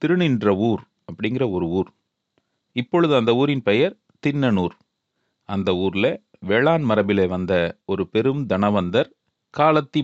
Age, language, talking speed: 40-59, Tamil, 115 wpm